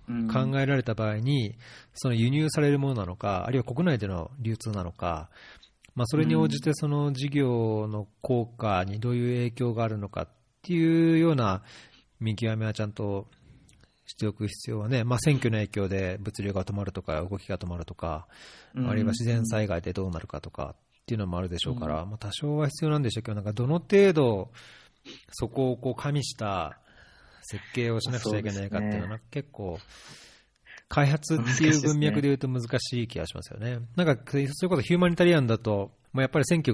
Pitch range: 105-135 Hz